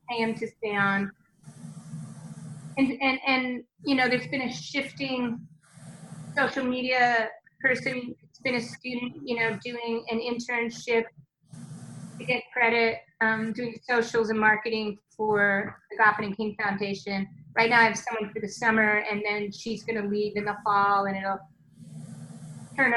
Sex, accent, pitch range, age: female, American, 210-265 Hz, 30-49